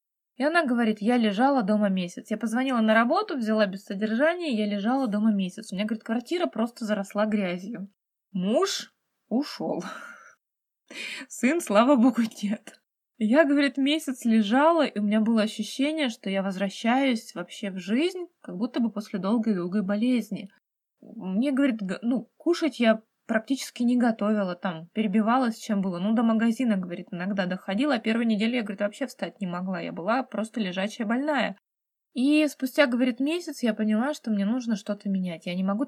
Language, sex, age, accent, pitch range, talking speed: Russian, female, 20-39, native, 200-250 Hz, 165 wpm